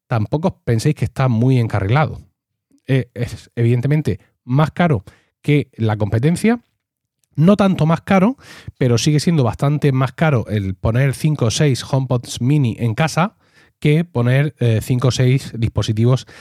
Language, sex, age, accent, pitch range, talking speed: Spanish, male, 30-49, Spanish, 110-145 Hz, 145 wpm